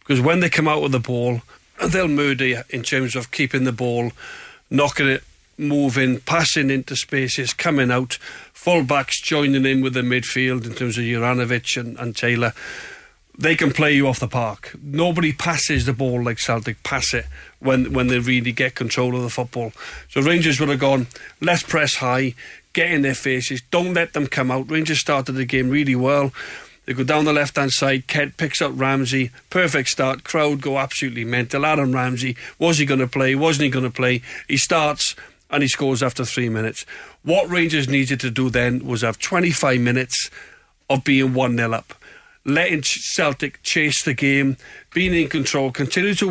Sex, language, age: male, English, 40-59